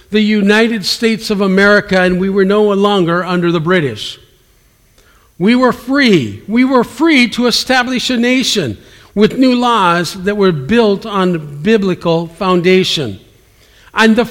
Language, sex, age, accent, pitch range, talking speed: English, male, 50-69, American, 155-225 Hz, 145 wpm